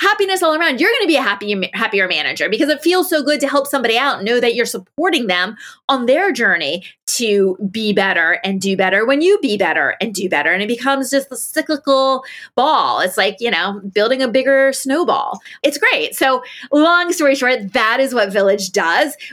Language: English